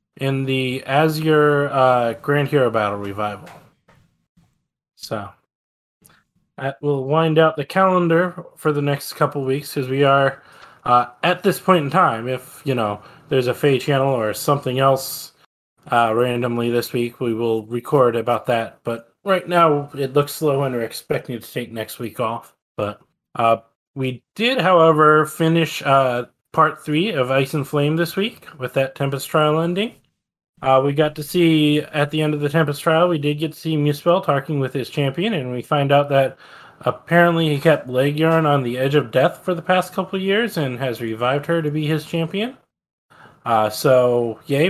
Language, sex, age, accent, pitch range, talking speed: English, male, 20-39, American, 130-160 Hz, 185 wpm